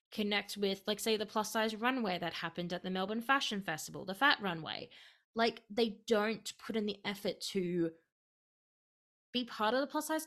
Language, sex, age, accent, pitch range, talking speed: English, female, 20-39, Australian, 190-250 Hz, 185 wpm